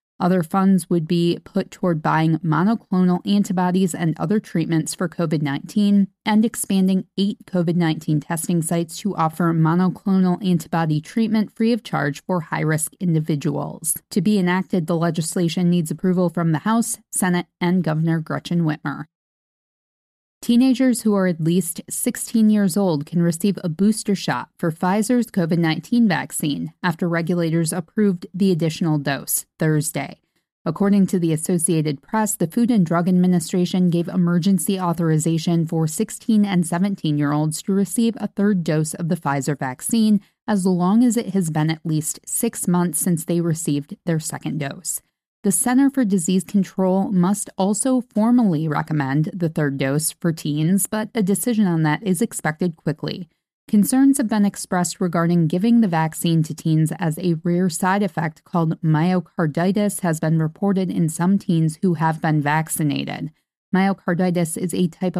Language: English